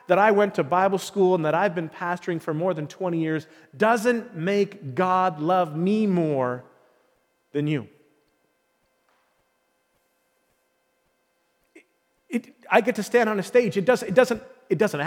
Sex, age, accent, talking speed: male, 40-59, American, 155 wpm